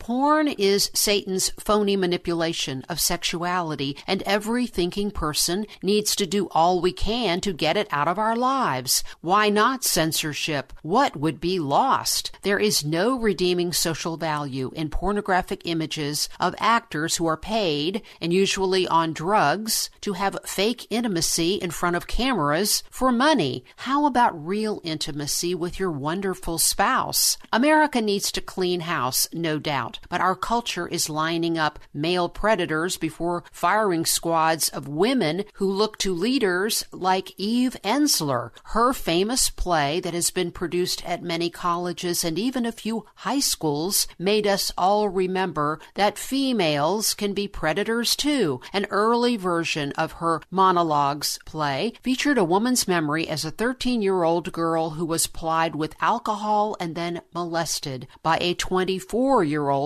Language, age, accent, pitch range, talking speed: English, 50-69, American, 165-210 Hz, 145 wpm